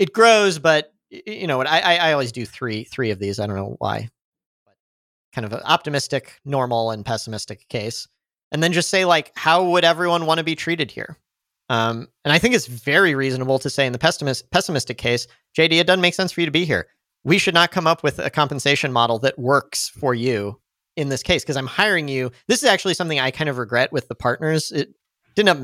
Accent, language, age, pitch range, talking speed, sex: American, English, 40-59, 125-170 Hz, 225 wpm, male